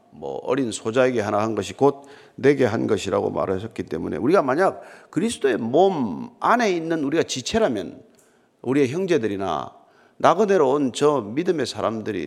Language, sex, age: Korean, male, 40-59